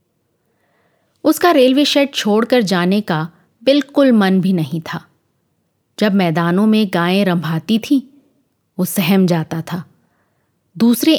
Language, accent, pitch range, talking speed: Hindi, native, 180-255 Hz, 120 wpm